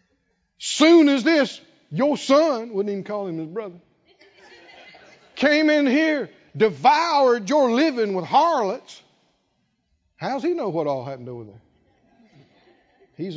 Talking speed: 130 wpm